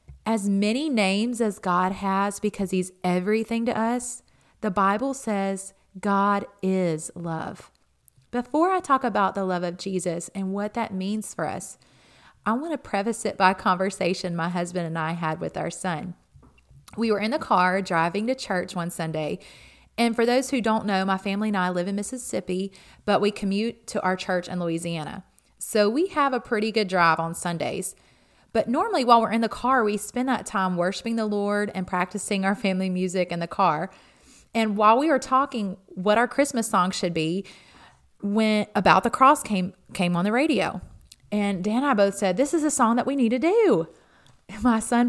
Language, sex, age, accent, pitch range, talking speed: English, female, 30-49, American, 185-245 Hz, 195 wpm